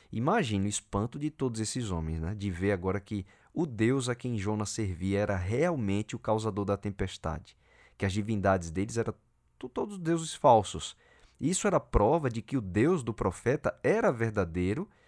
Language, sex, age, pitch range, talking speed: Portuguese, male, 20-39, 95-125 Hz, 170 wpm